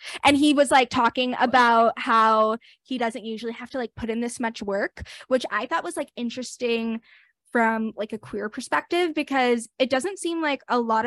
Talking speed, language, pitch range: 195 wpm, English, 220-260 Hz